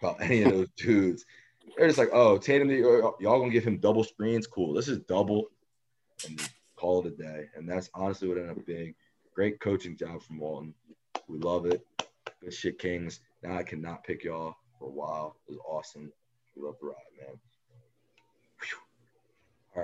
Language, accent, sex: English, American, male